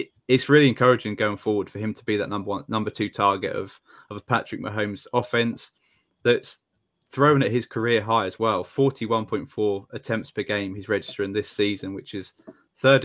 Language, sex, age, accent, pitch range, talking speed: English, male, 20-39, British, 100-115 Hz, 200 wpm